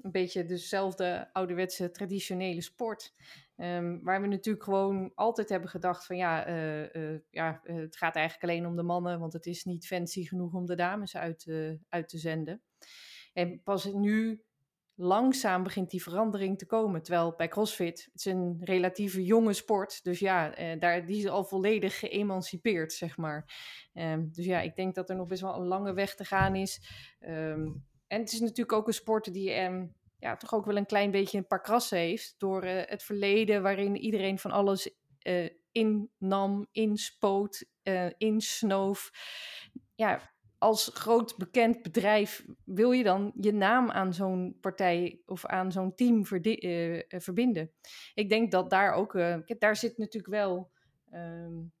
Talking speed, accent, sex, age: 165 wpm, Dutch, female, 20-39